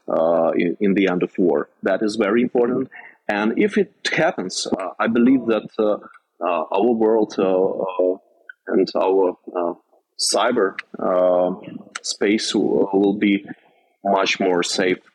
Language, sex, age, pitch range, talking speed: English, male, 30-49, 95-110 Hz, 145 wpm